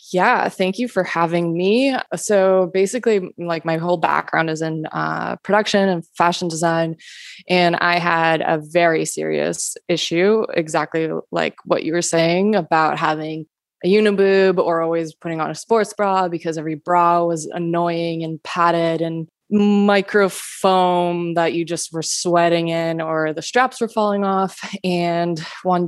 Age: 20-39